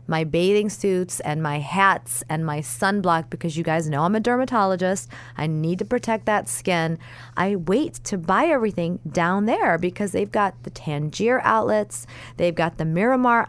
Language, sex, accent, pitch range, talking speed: English, female, American, 155-195 Hz, 175 wpm